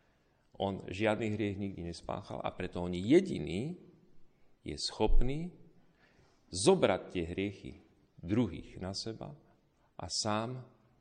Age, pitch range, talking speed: 40-59, 90-115 Hz, 105 wpm